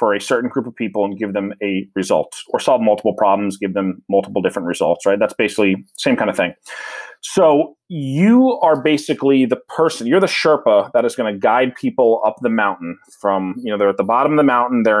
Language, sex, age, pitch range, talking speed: English, male, 30-49, 105-155 Hz, 230 wpm